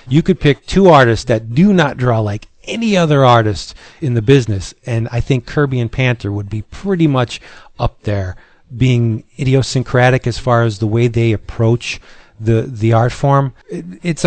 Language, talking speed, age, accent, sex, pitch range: English, 175 wpm, 40-59, American, male, 115-155 Hz